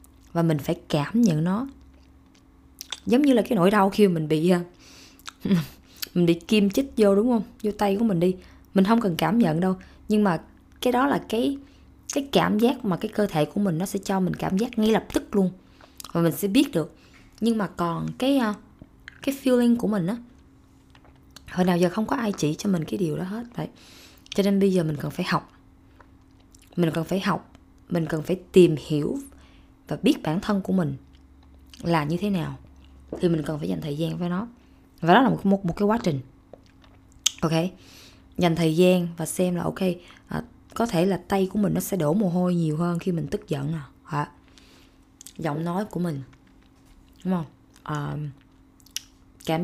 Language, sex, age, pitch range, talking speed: Vietnamese, female, 20-39, 150-205 Hz, 200 wpm